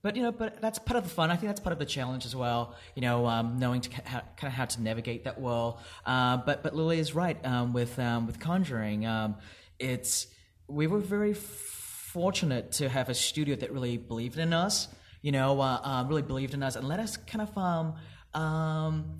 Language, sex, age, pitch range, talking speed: English, male, 30-49, 125-175 Hz, 220 wpm